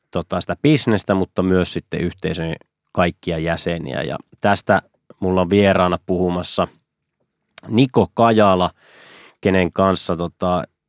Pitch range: 85-115 Hz